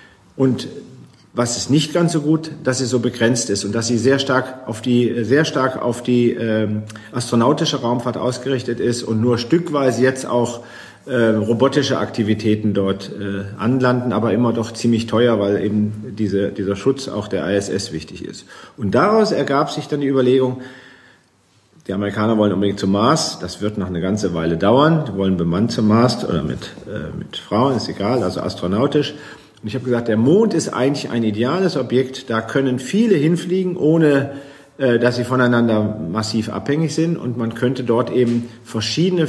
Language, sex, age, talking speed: German, male, 40-59, 180 wpm